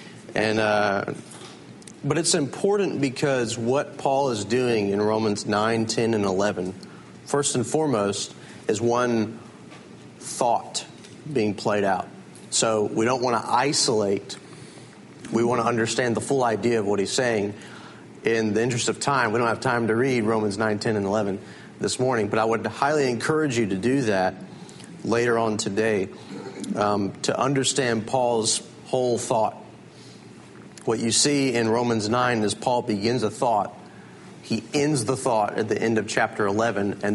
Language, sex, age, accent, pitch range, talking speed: English, male, 40-59, American, 105-125 Hz, 160 wpm